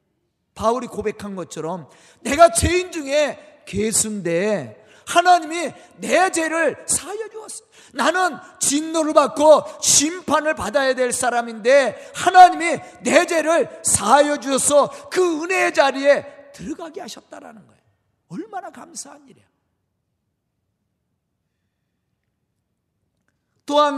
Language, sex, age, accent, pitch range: Korean, male, 40-59, native, 235-335 Hz